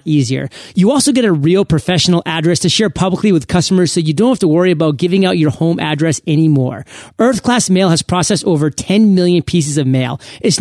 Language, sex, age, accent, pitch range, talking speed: English, male, 30-49, American, 155-200 Hz, 215 wpm